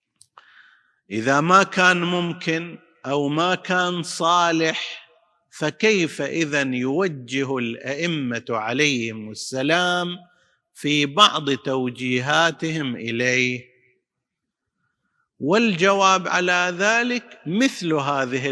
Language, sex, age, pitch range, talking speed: Arabic, male, 50-69, 135-185 Hz, 75 wpm